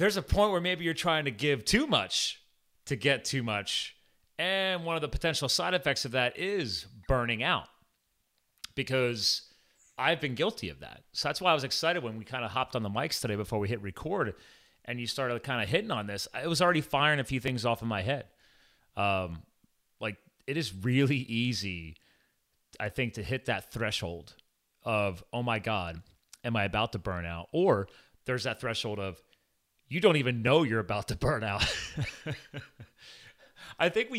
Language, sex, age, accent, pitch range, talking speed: English, male, 30-49, American, 105-140 Hz, 195 wpm